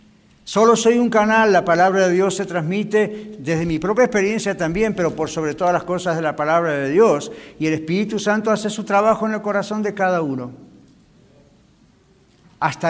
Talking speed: 185 wpm